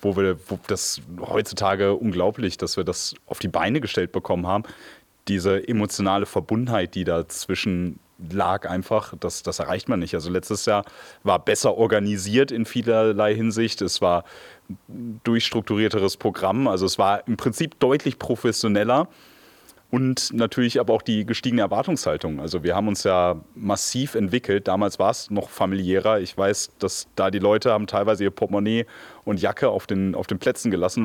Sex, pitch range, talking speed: male, 95-115 Hz, 160 wpm